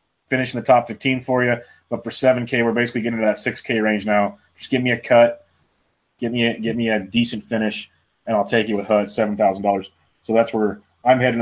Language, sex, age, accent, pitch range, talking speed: English, male, 20-39, American, 105-120 Hz, 220 wpm